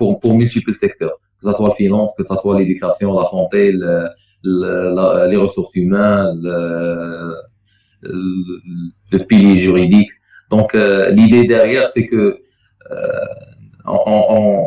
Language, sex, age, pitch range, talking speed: Arabic, male, 40-59, 95-110 Hz, 145 wpm